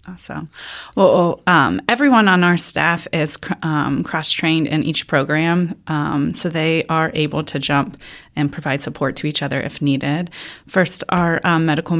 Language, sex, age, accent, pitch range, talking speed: English, female, 30-49, American, 160-180 Hz, 165 wpm